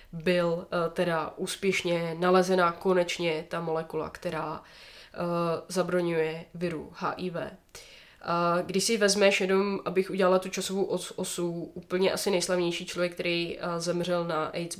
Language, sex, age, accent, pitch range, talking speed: Czech, female, 20-39, native, 170-190 Hz, 120 wpm